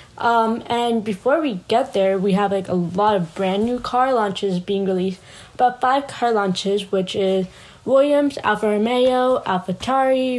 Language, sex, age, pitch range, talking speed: English, female, 10-29, 200-245 Hz, 170 wpm